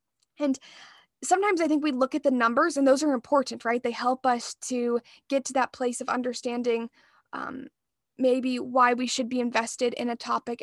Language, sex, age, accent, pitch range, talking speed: English, female, 10-29, American, 245-295 Hz, 190 wpm